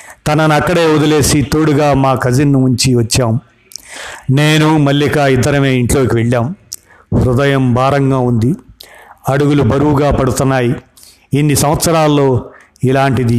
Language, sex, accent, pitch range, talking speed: Telugu, male, native, 120-140 Hz, 100 wpm